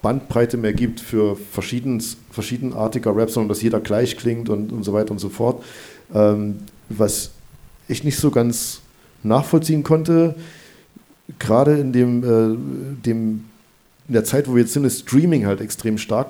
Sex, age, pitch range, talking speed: male, 50-69, 110-135 Hz, 160 wpm